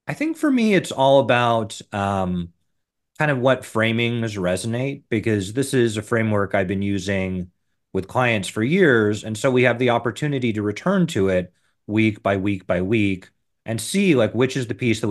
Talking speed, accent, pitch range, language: 190 wpm, American, 100-125 Hz, English